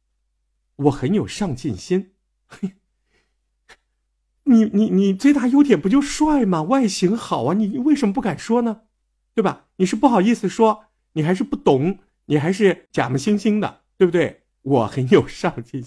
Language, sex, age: Chinese, male, 50-69